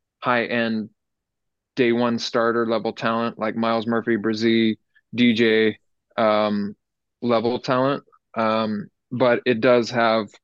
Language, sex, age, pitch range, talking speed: English, male, 20-39, 110-125 Hz, 110 wpm